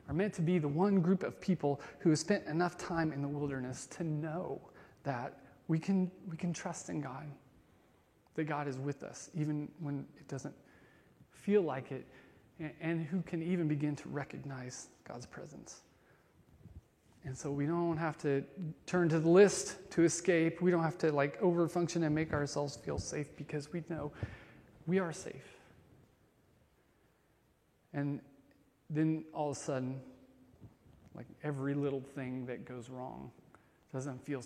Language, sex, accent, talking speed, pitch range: English, male, American, 160 wpm, 135-165 Hz